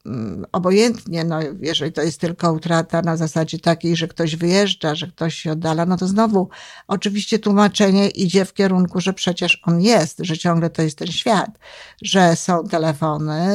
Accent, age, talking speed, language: native, 50-69, 170 wpm, Polish